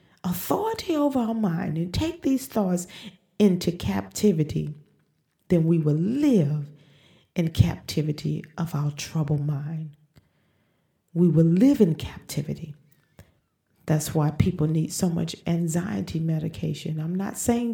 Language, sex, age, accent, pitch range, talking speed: English, female, 40-59, American, 150-180 Hz, 120 wpm